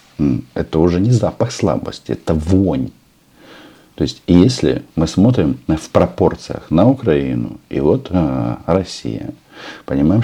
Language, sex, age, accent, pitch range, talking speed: Russian, male, 50-69, native, 75-95 Hz, 115 wpm